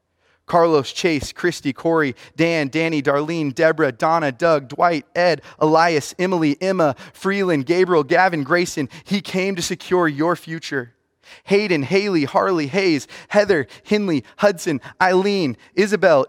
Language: English